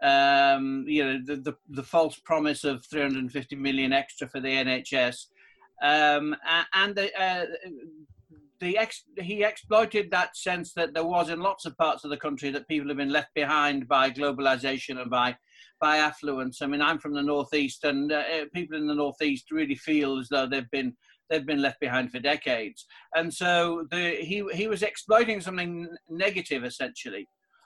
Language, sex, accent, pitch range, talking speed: English, male, British, 140-175 Hz, 175 wpm